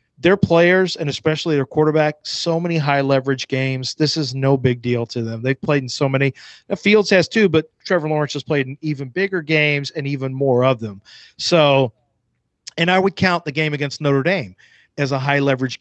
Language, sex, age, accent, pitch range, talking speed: English, male, 40-59, American, 135-155 Hz, 195 wpm